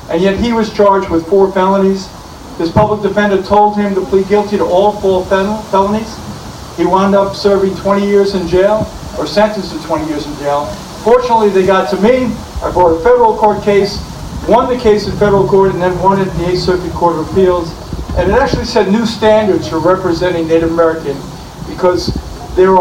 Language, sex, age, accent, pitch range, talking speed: English, male, 50-69, American, 165-205 Hz, 195 wpm